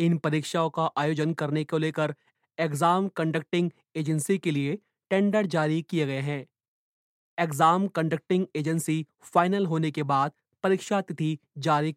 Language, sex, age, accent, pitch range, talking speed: Hindi, male, 30-49, native, 140-175 Hz, 135 wpm